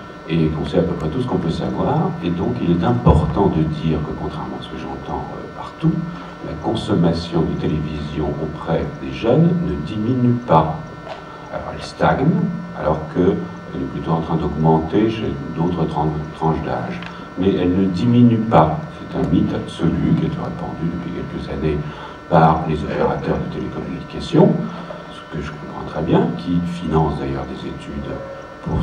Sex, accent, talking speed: male, French, 170 wpm